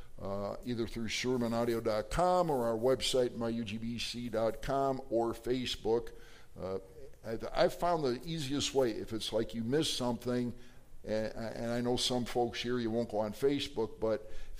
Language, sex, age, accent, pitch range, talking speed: English, male, 60-79, American, 110-130 Hz, 150 wpm